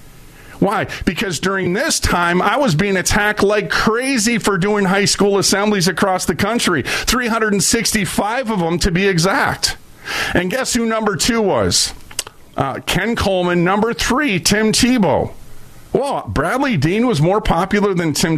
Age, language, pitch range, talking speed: 40-59, English, 155-205 Hz, 150 wpm